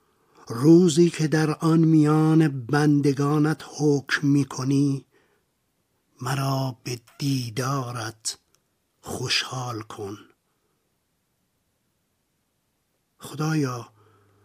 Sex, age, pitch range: male, 50-69, 140-165 Hz